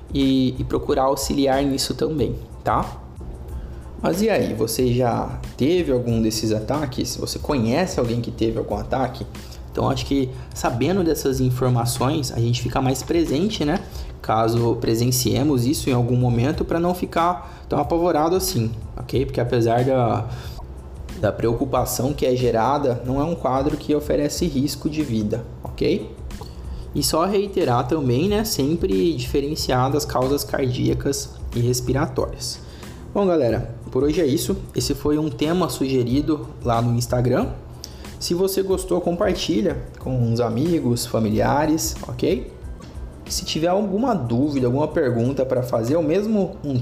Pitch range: 115-150 Hz